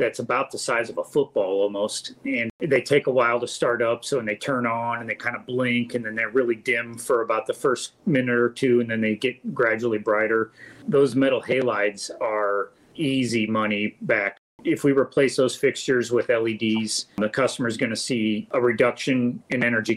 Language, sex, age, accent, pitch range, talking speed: English, male, 40-59, American, 110-135 Hz, 200 wpm